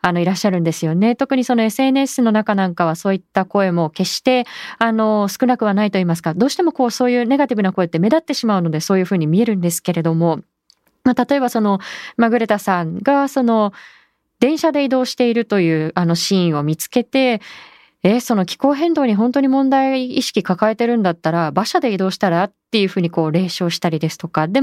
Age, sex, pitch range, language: 20-39, female, 185-260 Hz, Japanese